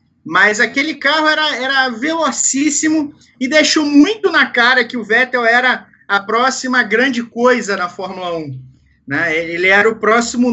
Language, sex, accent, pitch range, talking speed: Portuguese, male, Brazilian, 215-275 Hz, 155 wpm